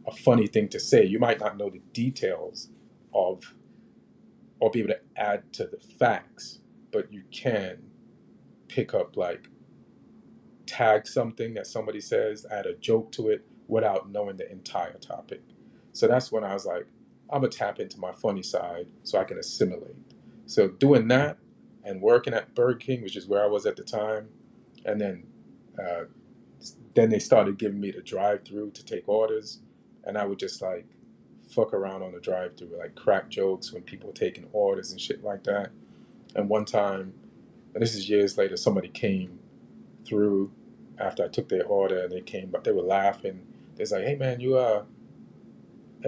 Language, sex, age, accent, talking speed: English, male, 40-59, American, 180 wpm